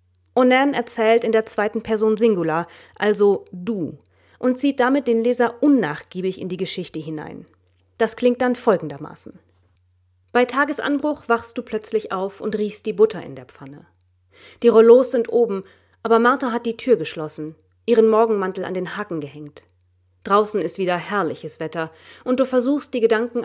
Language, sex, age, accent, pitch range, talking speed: German, female, 30-49, German, 155-230 Hz, 160 wpm